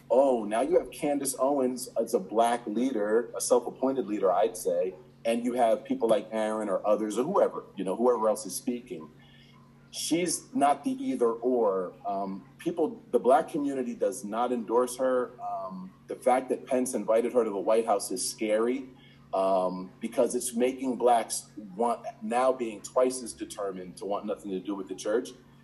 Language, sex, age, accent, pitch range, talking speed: English, male, 40-59, American, 110-140 Hz, 180 wpm